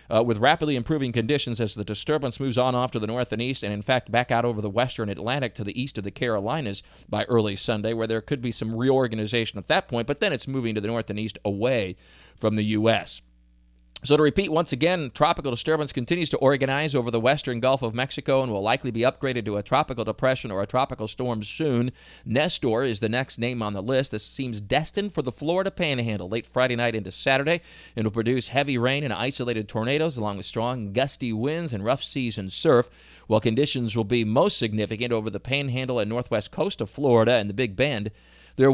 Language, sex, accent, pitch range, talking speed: English, male, American, 110-140 Hz, 220 wpm